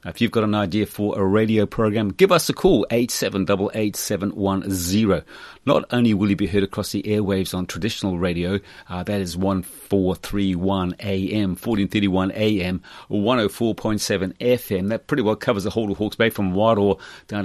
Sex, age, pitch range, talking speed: male, 40-59, 95-115 Hz, 160 wpm